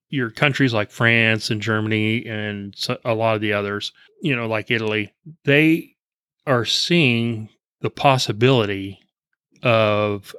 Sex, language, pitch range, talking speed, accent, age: male, English, 110-135 Hz, 125 wpm, American, 30-49